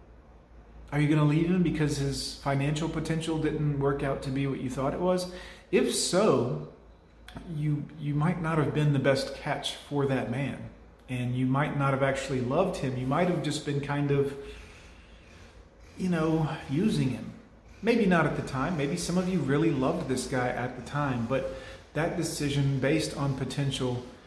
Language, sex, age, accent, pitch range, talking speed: English, male, 30-49, American, 130-160 Hz, 185 wpm